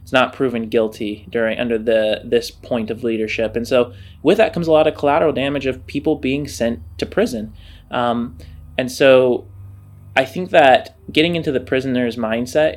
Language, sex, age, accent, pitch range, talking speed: English, male, 20-39, American, 115-150 Hz, 175 wpm